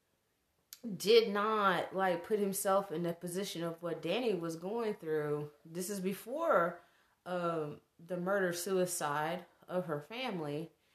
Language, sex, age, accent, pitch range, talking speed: English, female, 30-49, American, 175-215 Hz, 130 wpm